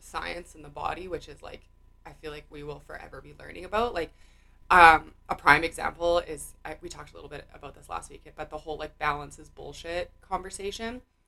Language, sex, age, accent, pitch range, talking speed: English, female, 20-39, American, 145-175 Hz, 205 wpm